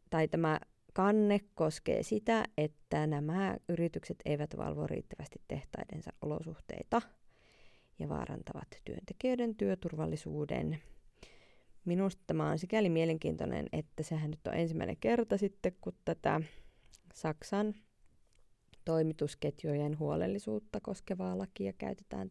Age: 20-39